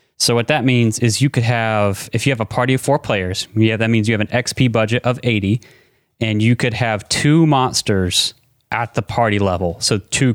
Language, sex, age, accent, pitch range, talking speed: English, male, 30-49, American, 105-130 Hz, 220 wpm